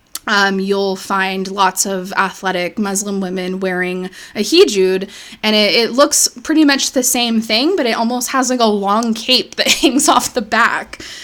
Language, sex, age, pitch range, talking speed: English, female, 20-39, 200-255 Hz, 175 wpm